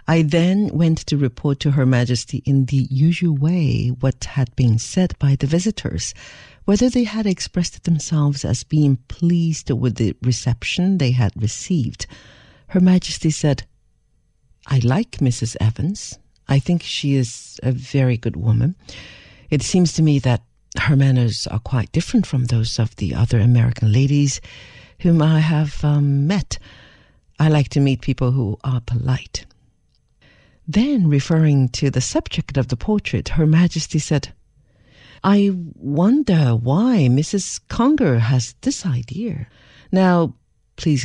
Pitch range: 125-170 Hz